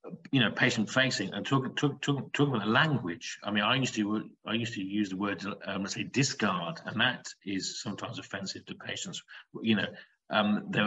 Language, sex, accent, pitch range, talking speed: English, male, British, 100-125 Hz, 195 wpm